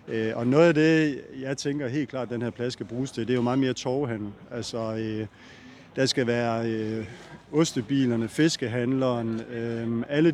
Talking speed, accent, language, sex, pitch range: 165 wpm, native, Danish, male, 115-145 Hz